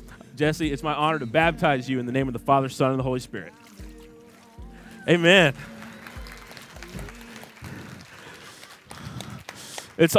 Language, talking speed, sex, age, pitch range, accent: English, 120 wpm, male, 30-49, 135-190 Hz, American